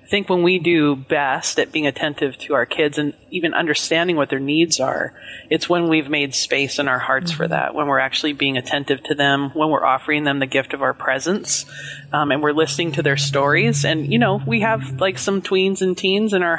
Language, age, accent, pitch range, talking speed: English, 30-49, American, 145-180 Hz, 230 wpm